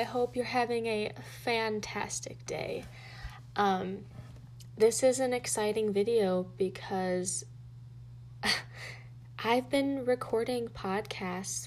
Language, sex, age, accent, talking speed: English, female, 20-39, American, 95 wpm